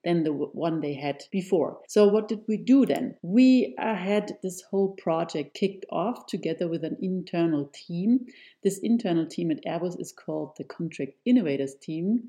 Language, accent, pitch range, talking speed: English, German, 160-195 Hz, 175 wpm